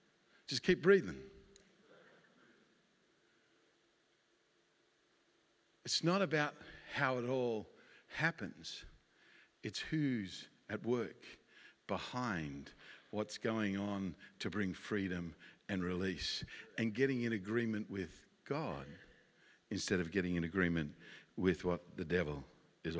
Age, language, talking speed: 60-79, English, 100 wpm